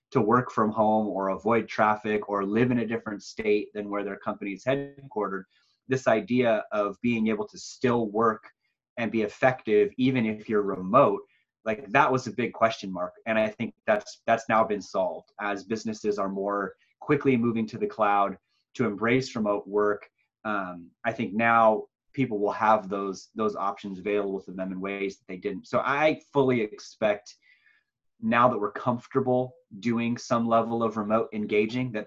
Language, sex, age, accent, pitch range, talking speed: English, male, 30-49, American, 100-120 Hz, 180 wpm